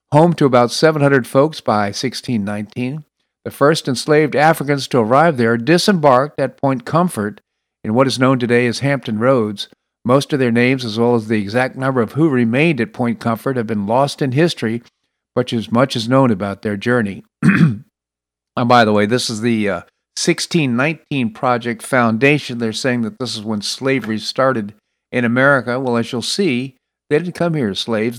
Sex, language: male, English